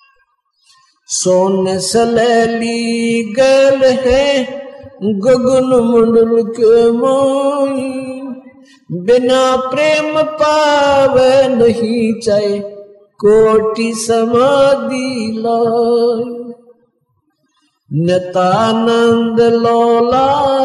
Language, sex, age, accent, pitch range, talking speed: Hindi, male, 50-69, native, 230-280 Hz, 50 wpm